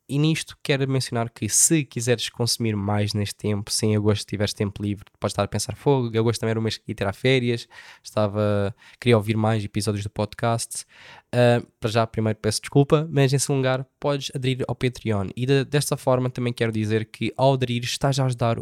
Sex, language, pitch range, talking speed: male, Portuguese, 105-125 Hz, 210 wpm